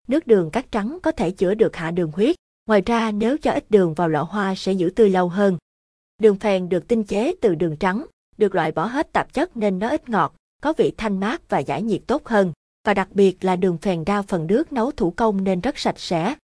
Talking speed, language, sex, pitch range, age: 250 wpm, Vietnamese, female, 180-230 Hz, 20-39